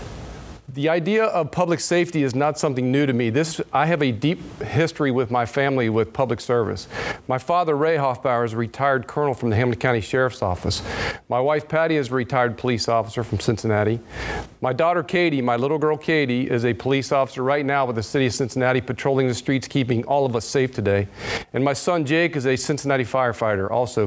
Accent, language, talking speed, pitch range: American, English, 205 wpm, 120-155 Hz